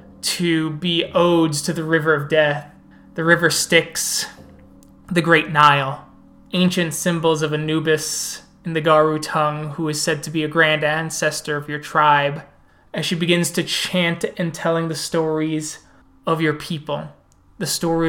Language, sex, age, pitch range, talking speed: English, male, 20-39, 145-165 Hz, 155 wpm